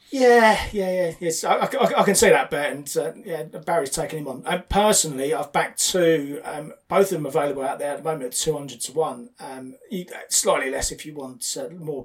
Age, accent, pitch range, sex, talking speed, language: 30-49, British, 140-195 Hz, male, 235 wpm, English